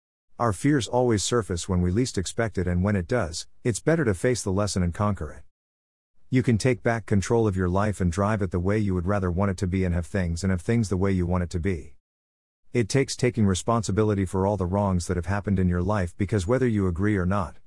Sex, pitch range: male, 90-110 Hz